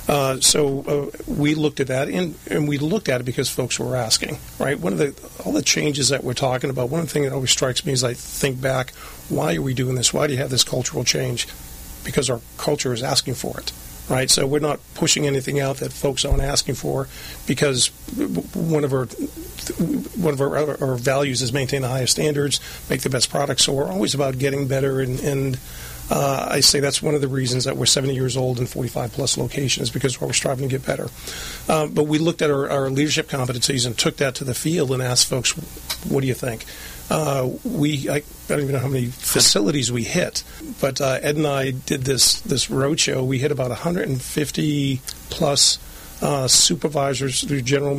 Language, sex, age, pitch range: English, male, 40-59, 130-145 Hz